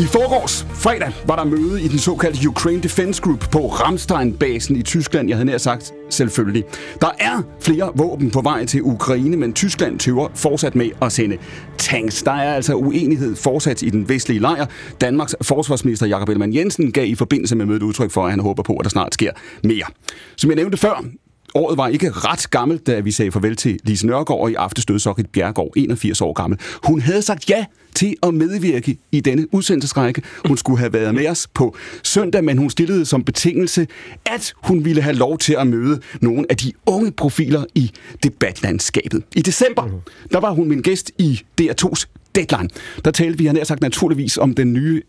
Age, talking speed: 30-49, 195 wpm